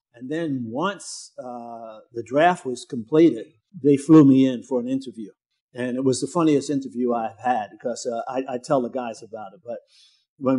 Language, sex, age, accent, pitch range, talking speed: English, male, 50-69, American, 125-160 Hz, 195 wpm